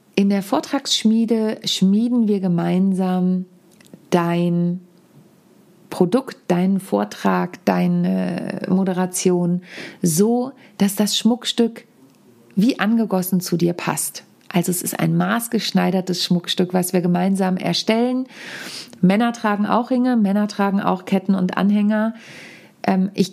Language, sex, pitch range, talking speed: German, female, 180-220 Hz, 110 wpm